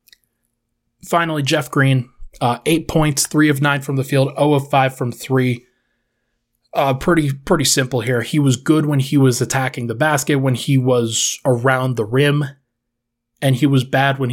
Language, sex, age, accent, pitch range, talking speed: English, male, 20-39, American, 120-140 Hz, 170 wpm